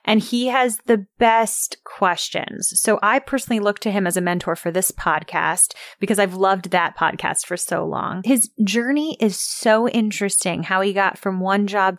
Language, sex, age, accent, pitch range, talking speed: English, female, 20-39, American, 180-215 Hz, 185 wpm